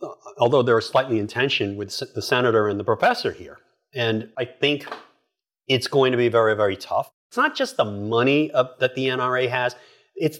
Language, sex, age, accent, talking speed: English, male, 40-59, American, 195 wpm